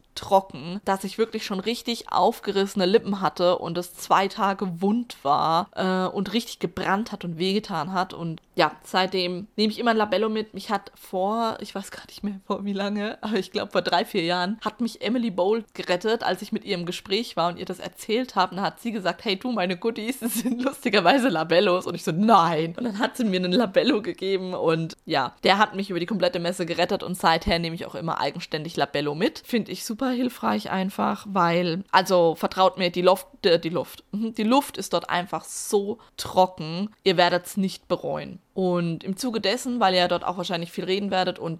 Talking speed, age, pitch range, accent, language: 215 wpm, 20-39, 180-220 Hz, German, German